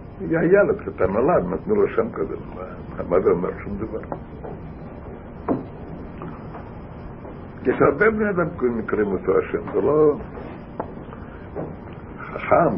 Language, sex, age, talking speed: Hebrew, male, 60-79, 105 wpm